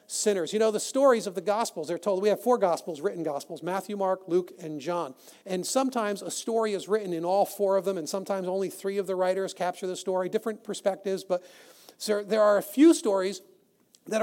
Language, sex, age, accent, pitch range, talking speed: English, male, 40-59, American, 175-215 Hz, 220 wpm